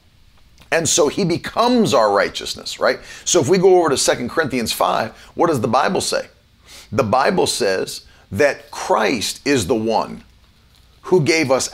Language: English